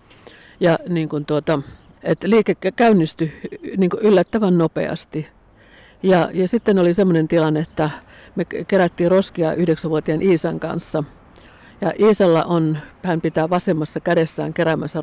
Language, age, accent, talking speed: Finnish, 50-69, native, 85 wpm